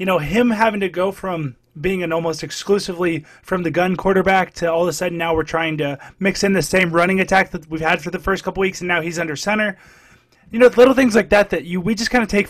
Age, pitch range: 20-39, 160-205 Hz